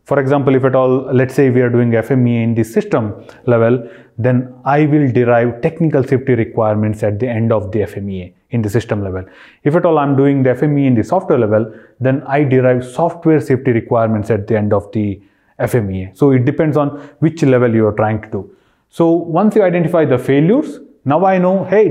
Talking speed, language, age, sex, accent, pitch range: 210 wpm, English, 30-49, male, Indian, 120-150 Hz